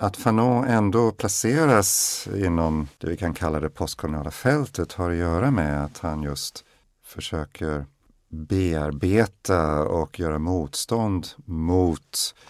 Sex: male